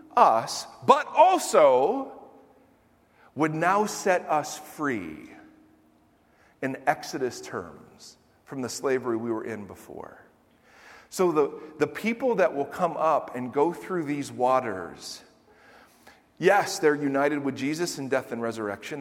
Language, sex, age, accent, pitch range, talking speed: English, male, 40-59, American, 130-200 Hz, 125 wpm